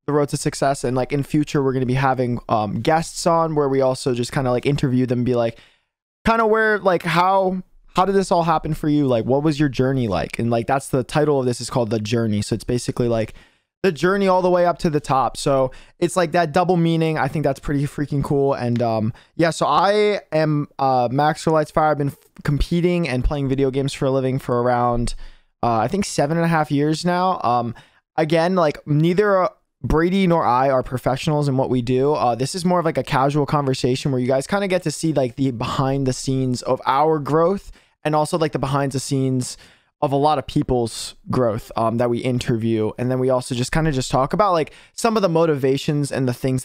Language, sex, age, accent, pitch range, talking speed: English, male, 20-39, American, 125-160 Hz, 235 wpm